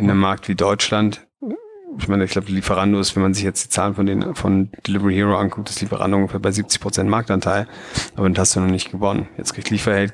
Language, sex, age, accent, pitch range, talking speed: German, male, 30-49, German, 95-105 Hz, 230 wpm